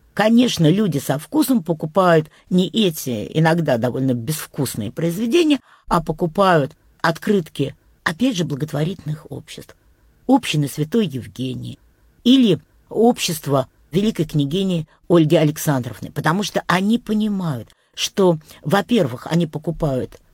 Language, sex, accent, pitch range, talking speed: Russian, female, American, 140-195 Hz, 105 wpm